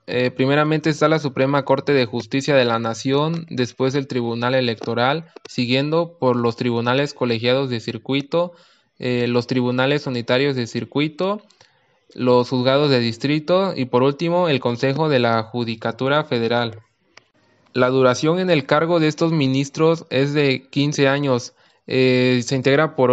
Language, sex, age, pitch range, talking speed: Spanish, male, 20-39, 125-145 Hz, 150 wpm